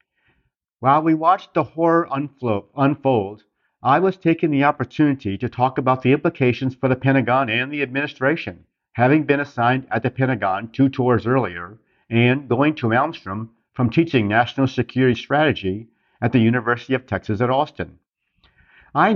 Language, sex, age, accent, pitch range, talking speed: English, male, 50-69, American, 115-145 Hz, 150 wpm